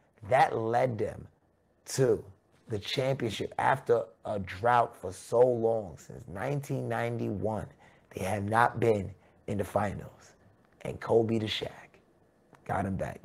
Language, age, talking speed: English, 30-49, 125 wpm